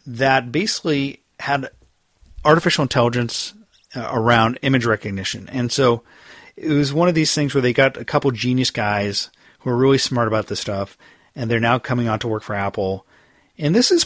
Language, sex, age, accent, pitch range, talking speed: English, male, 40-59, American, 110-140 Hz, 185 wpm